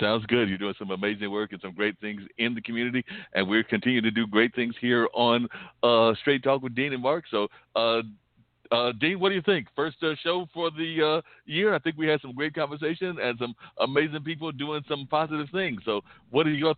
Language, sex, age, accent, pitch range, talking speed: English, male, 60-79, American, 105-135 Hz, 230 wpm